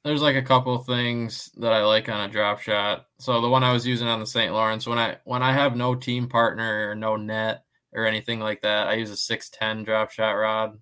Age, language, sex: 20-39, English, male